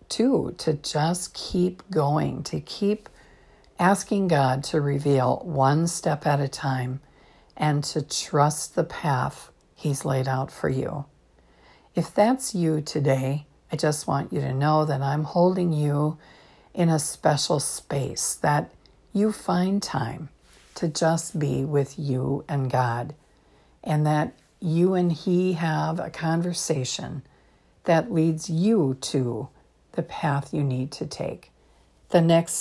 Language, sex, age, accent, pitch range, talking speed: English, female, 60-79, American, 140-180 Hz, 140 wpm